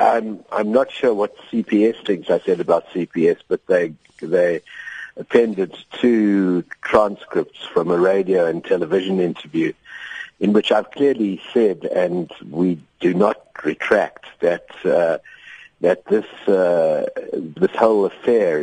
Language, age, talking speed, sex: English, 60-79, 130 wpm, male